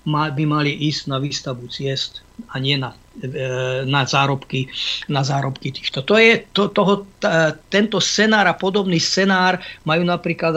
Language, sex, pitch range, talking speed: Slovak, male, 150-185 Hz, 150 wpm